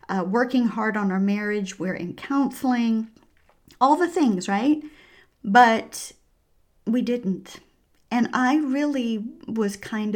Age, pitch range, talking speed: 40-59, 195-270 Hz, 125 wpm